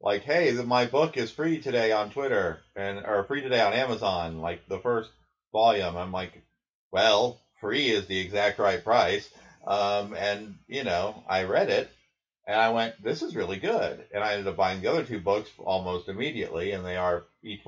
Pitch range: 100-125 Hz